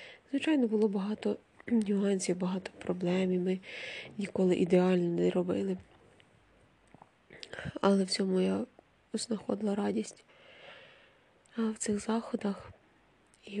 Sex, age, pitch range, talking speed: female, 20-39, 195-220 Hz, 100 wpm